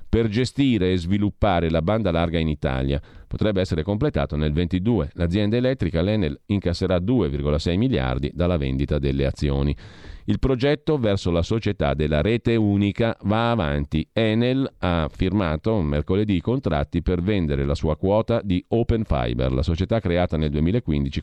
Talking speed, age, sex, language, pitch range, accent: 150 wpm, 40-59, male, Italian, 80-100 Hz, native